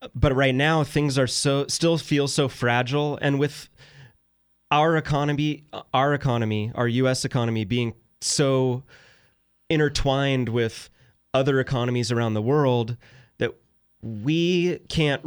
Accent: American